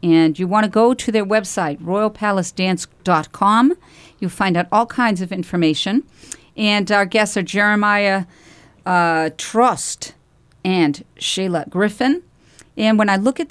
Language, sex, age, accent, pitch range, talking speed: English, female, 50-69, American, 170-215 Hz, 140 wpm